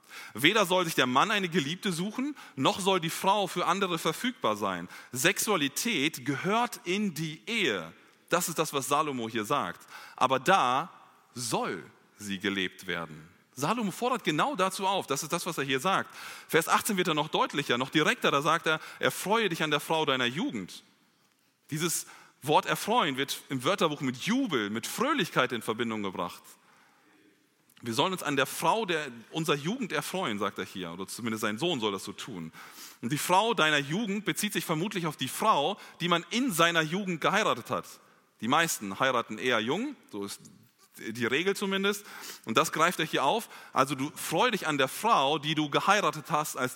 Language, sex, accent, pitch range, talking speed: German, male, German, 130-195 Hz, 185 wpm